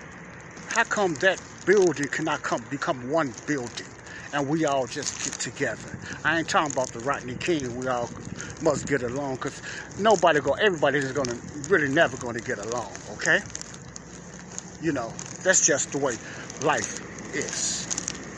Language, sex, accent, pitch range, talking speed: English, male, American, 140-170 Hz, 160 wpm